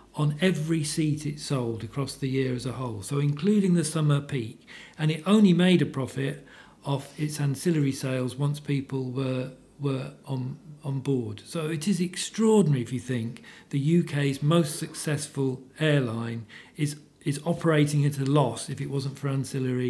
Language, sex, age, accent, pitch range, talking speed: English, male, 40-59, British, 135-155 Hz, 170 wpm